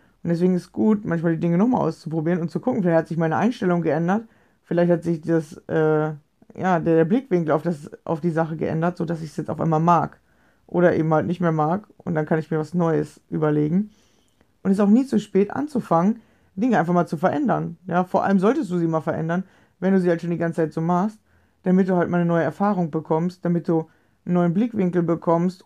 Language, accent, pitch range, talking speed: German, German, 165-185 Hz, 225 wpm